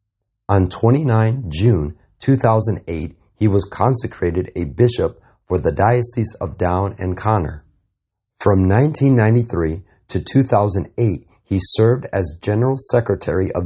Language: English